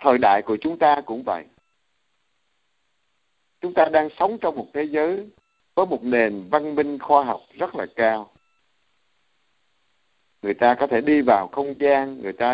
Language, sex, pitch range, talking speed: Vietnamese, male, 115-165 Hz, 165 wpm